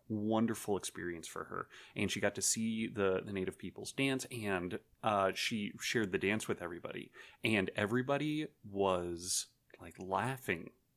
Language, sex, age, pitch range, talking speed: English, male, 30-49, 95-110 Hz, 150 wpm